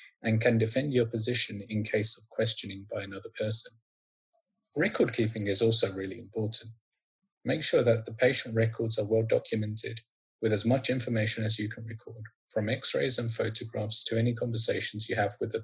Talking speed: 175 wpm